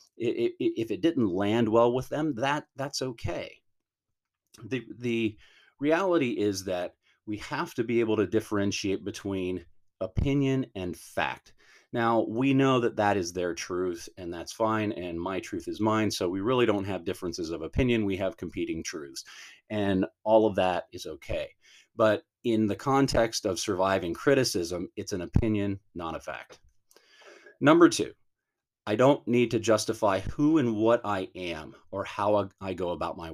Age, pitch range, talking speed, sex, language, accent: 40-59, 95-130 Hz, 165 wpm, male, English, American